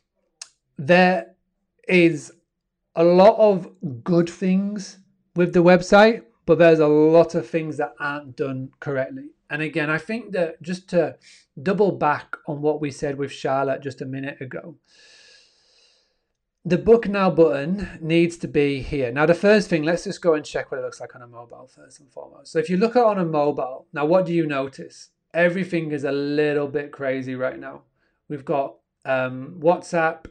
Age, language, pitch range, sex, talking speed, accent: 30-49, English, 145-180 Hz, male, 180 wpm, British